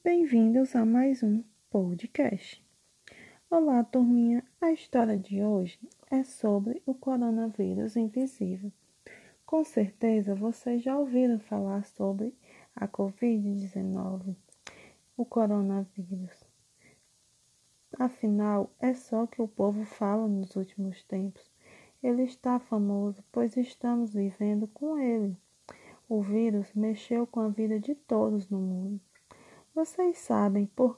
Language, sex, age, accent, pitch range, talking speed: Portuguese, female, 20-39, Brazilian, 200-240 Hz, 110 wpm